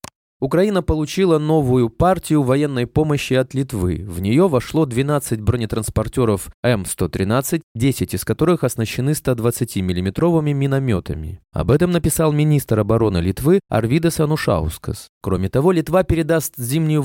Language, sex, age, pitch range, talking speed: Russian, male, 20-39, 115-155 Hz, 120 wpm